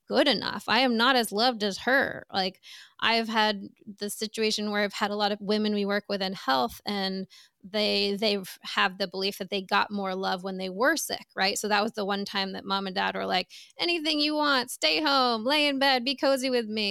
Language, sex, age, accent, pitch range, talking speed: English, female, 20-39, American, 195-235 Hz, 235 wpm